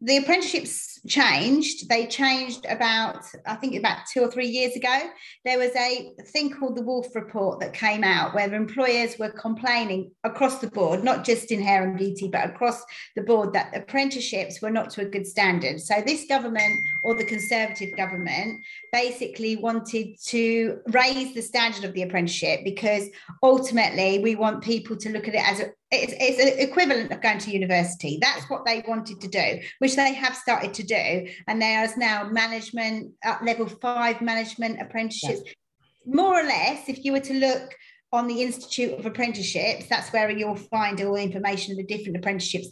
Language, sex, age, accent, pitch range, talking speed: English, female, 40-59, British, 210-250 Hz, 185 wpm